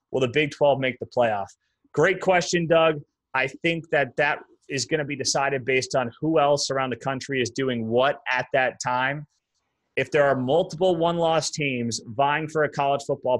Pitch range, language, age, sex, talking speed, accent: 135-170 Hz, English, 30-49, male, 195 wpm, American